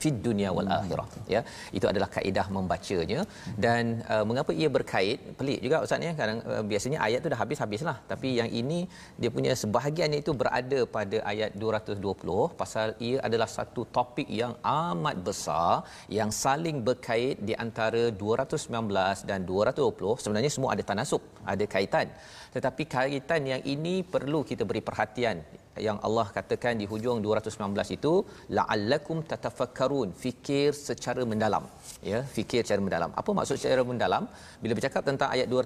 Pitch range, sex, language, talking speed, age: 110-140 Hz, male, Malayalam, 155 wpm, 40-59